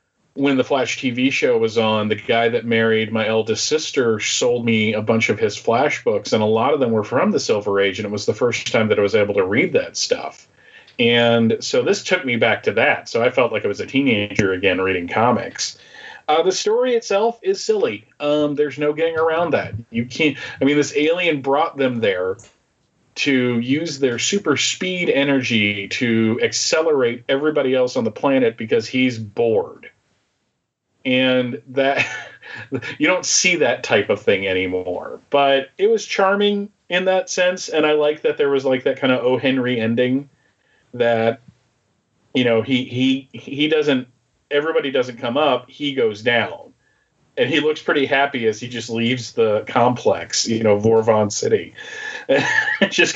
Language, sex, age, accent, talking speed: English, male, 40-59, American, 185 wpm